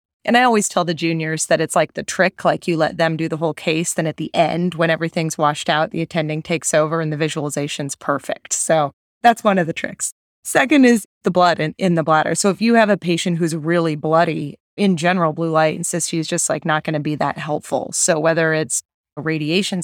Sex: female